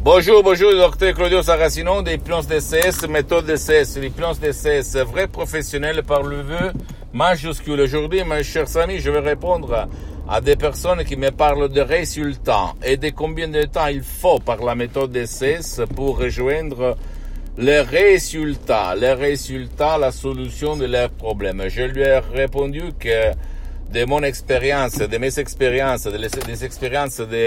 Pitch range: 105-145 Hz